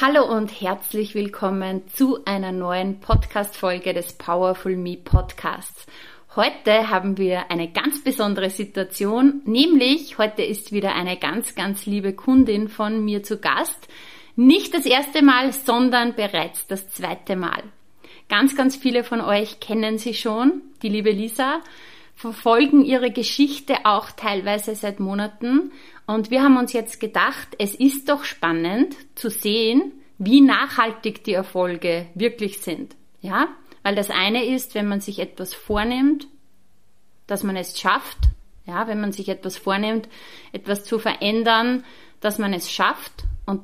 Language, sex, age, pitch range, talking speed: German, female, 30-49, 195-250 Hz, 145 wpm